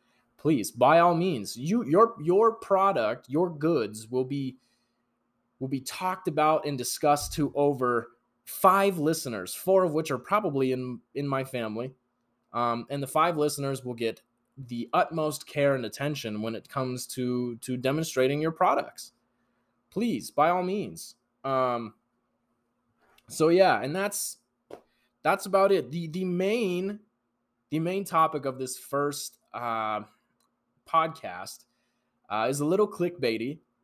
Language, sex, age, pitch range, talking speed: English, male, 20-39, 120-160 Hz, 140 wpm